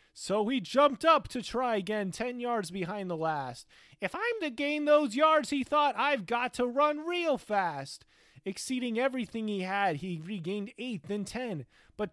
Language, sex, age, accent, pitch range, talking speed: English, male, 30-49, American, 180-255 Hz, 180 wpm